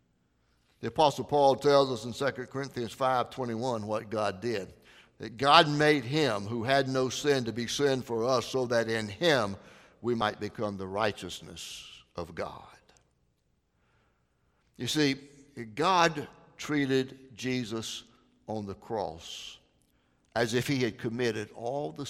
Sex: male